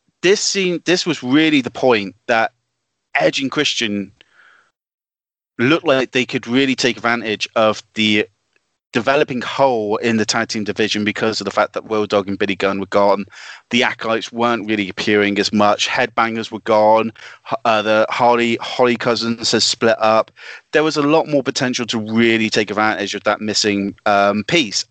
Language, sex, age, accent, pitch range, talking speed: English, male, 30-49, British, 105-125 Hz, 175 wpm